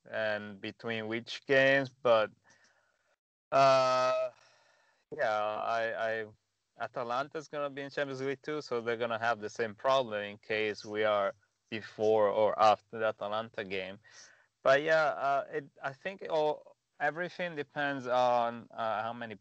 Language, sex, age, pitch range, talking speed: English, male, 20-39, 110-130 Hz, 140 wpm